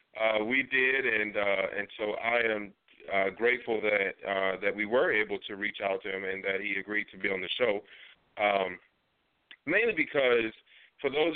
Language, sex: English, male